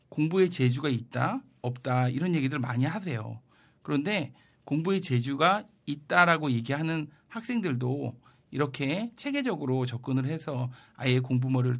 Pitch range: 125-175 Hz